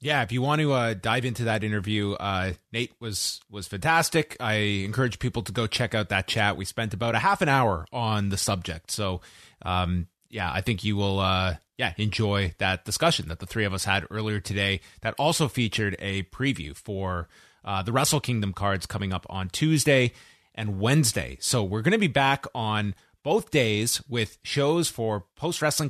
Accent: American